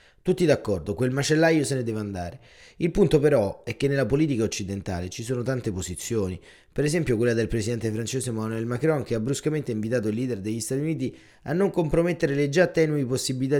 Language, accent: Italian, native